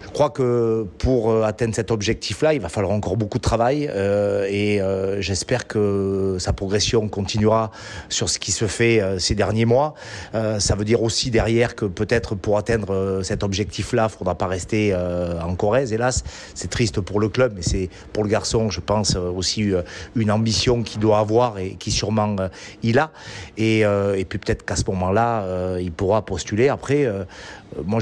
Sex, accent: male, French